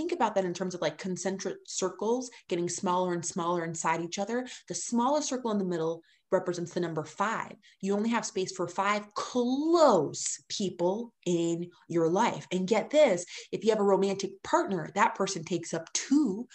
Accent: American